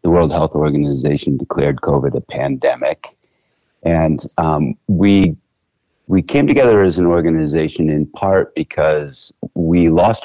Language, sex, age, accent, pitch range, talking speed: English, male, 30-49, American, 70-80 Hz, 130 wpm